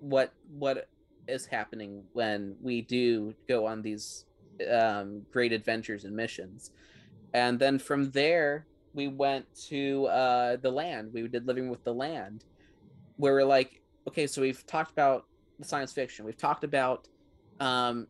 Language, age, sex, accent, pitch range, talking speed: English, 30-49, male, American, 110-135 Hz, 155 wpm